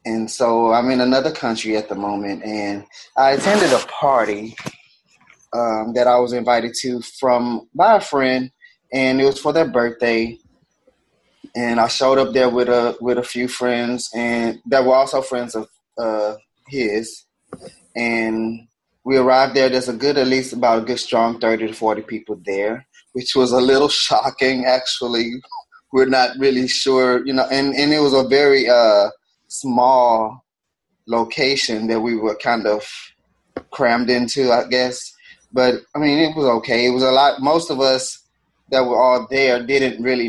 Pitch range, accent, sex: 115-130 Hz, American, male